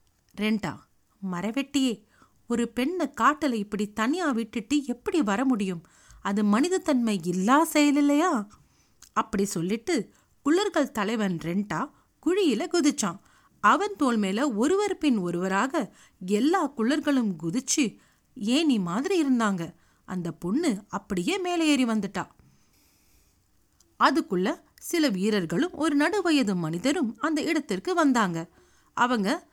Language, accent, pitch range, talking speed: Tamil, native, 195-300 Hz, 95 wpm